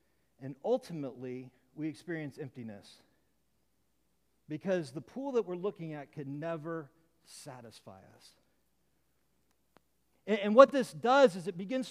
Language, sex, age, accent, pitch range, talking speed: English, male, 40-59, American, 155-205 Hz, 120 wpm